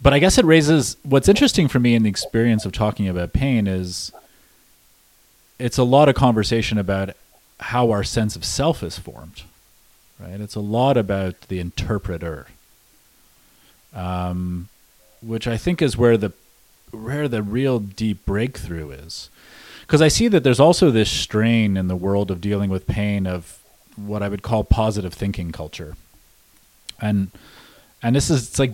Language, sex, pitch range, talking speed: English, male, 90-115 Hz, 165 wpm